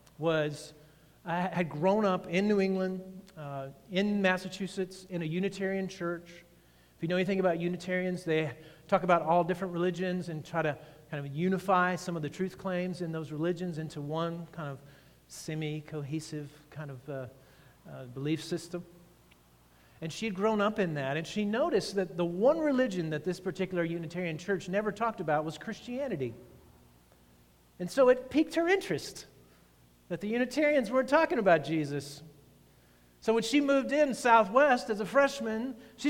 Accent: American